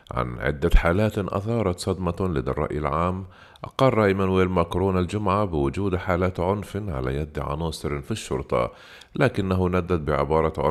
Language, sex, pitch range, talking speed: Arabic, male, 70-95 Hz, 125 wpm